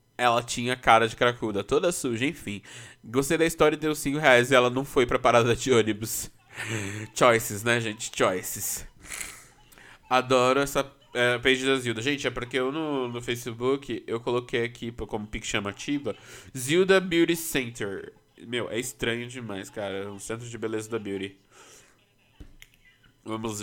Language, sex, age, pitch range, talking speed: Portuguese, male, 20-39, 115-135 Hz, 160 wpm